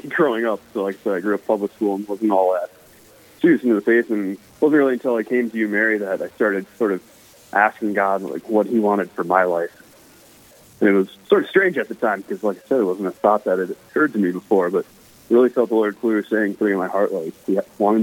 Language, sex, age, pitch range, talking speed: English, male, 20-39, 95-115 Hz, 265 wpm